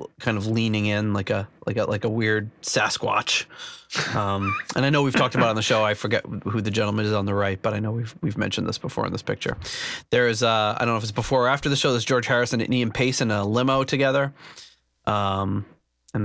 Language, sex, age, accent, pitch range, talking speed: English, male, 20-39, American, 105-120 Hz, 250 wpm